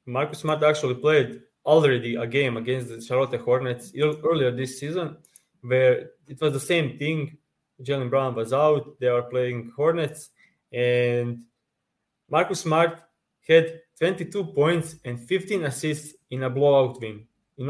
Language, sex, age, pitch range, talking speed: English, male, 20-39, 125-155 Hz, 140 wpm